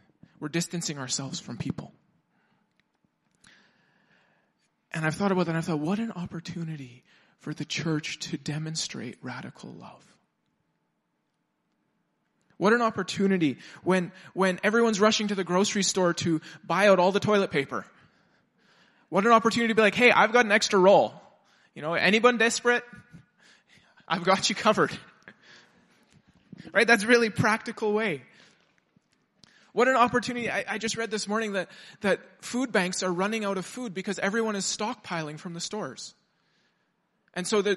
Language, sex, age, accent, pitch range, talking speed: English, male, 20-39, American, 180-225 Hz, 150 wpm